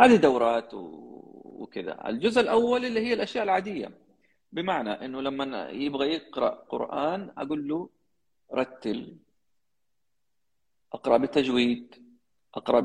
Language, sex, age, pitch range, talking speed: Arabic, male, 30-49, 110-145 Hz, 100 wpm